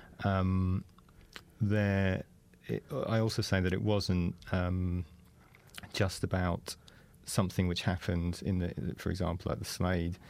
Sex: male